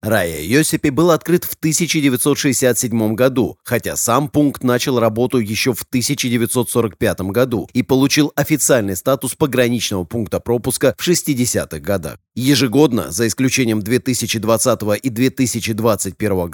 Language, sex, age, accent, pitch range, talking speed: Russian, male, 30-49, native, 110-135 Hz, 115 wpm